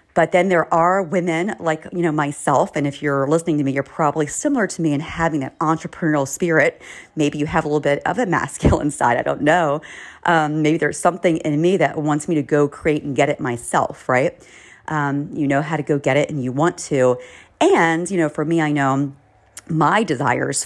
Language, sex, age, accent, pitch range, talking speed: English, female, 40-59, American, 135-160 Hz, 220 wpm